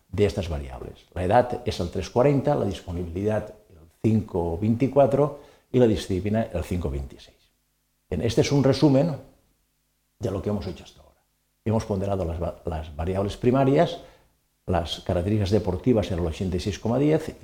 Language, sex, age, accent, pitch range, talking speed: Spanish, male, 60-79, Spanish, 90-125 Hz, 140 wpm